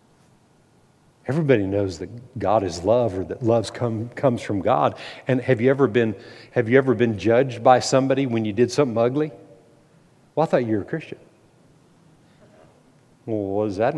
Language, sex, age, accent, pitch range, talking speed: English, male, 50-69, American, 125-185 Hz, 175 wpm